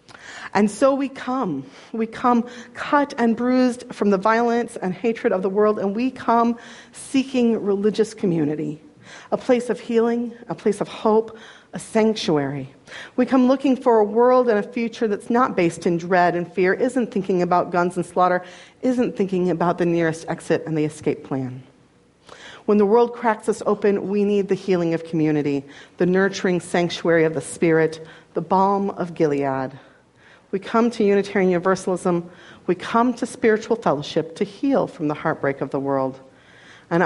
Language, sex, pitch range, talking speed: English, female, 170-230 Hz, 170 wpm